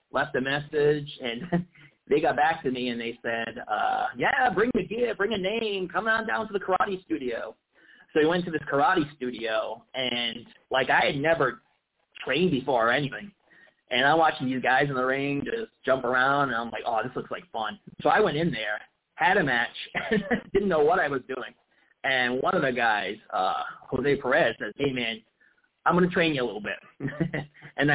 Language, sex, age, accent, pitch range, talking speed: English, male, 30-49, American, 125-165 Hz, 205 wpm